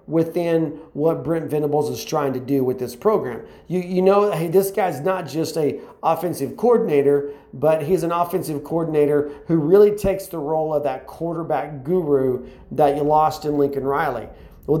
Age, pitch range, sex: 40-59, 150-200 Hz, male